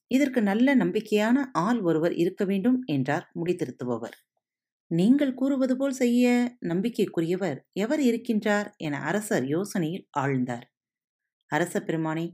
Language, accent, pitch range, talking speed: Tamil, native, 140-220 Hz, 100 wpm